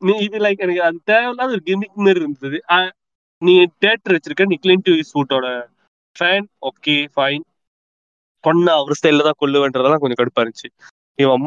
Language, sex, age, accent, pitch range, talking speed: Tamil, male, 20-39, native, 145-215 Hz, 60 wpm